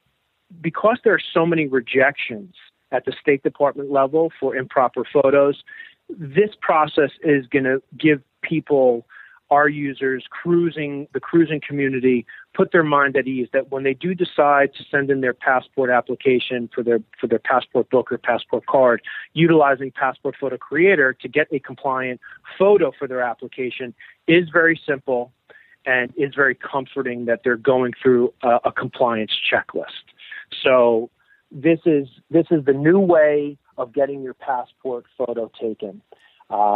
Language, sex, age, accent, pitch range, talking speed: English, male, 40-59, American, 125-150 Hz, 155 wpm